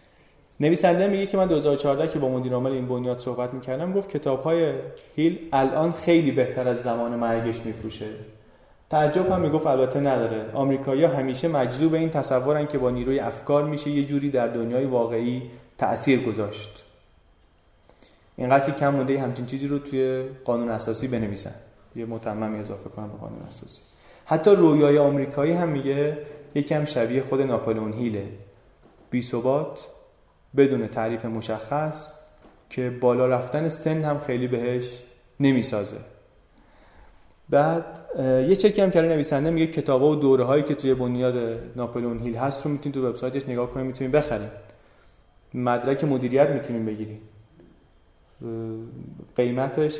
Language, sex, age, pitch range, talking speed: Persian, male, 30-49, 115-145 Hz, 140 wpm